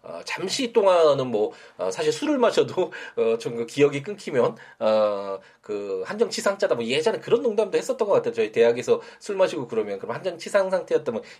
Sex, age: male, 20-39